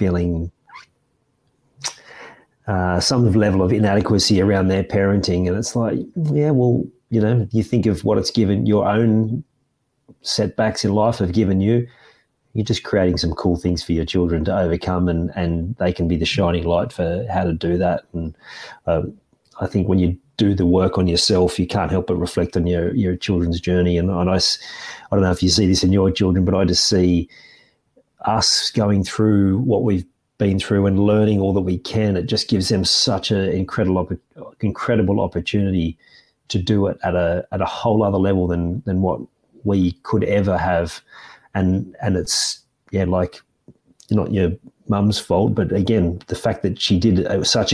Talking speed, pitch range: 185 wpm, 90-110 Hz